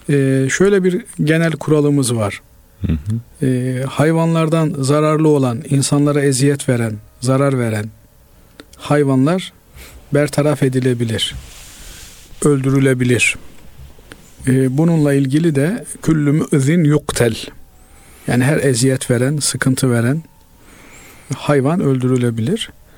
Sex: male